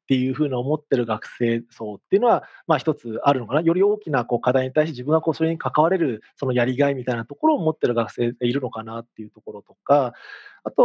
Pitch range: 130-170 Hz